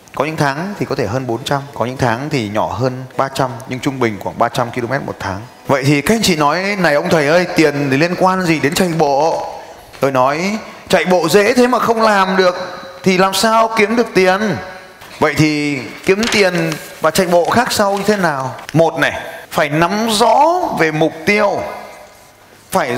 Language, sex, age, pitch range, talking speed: Vietnamese, male, 20-39, 130-185 Hz, 210 wpm